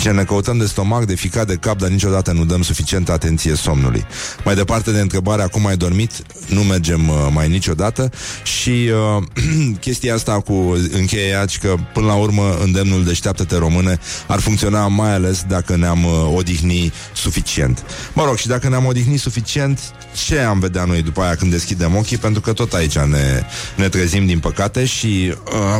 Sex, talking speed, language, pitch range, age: male, 175 wpm, Romanian, 85-105 Hz, 30-49